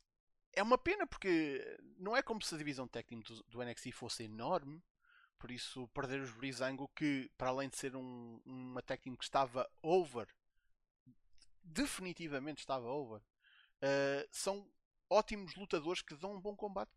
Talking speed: 160 wpm